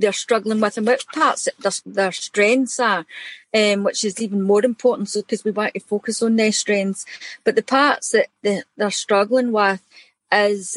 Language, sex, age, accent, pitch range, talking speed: English, female, 40-59, British, 200-245 Hz, 190 wpm